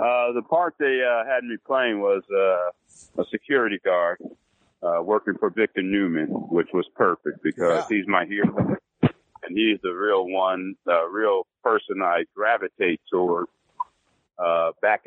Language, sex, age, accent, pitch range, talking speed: English, male, 50-69, American, 90-110 Hz, 150 wpm